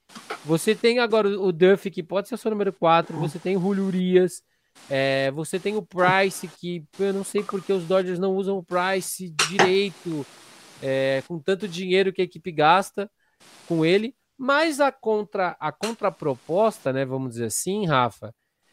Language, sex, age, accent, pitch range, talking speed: Portuguese, male, 20-39, Brazilian, 150-200 Hz, 160 wpm